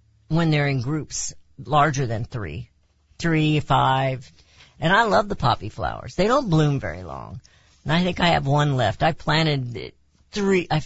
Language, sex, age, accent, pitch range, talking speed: English, female, 50-69, American, 120-185 Hz, 170 wpm